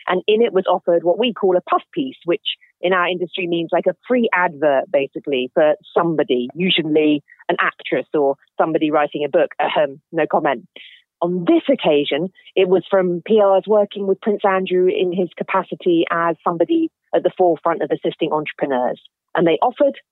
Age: 40-59